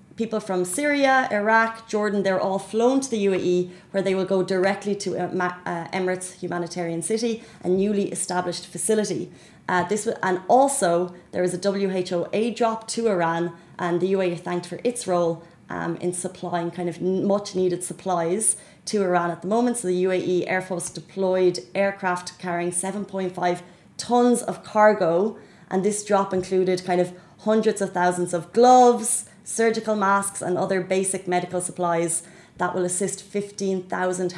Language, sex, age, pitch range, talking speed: Arabic, female, 30-49, 175-205 Hz, 160 wpm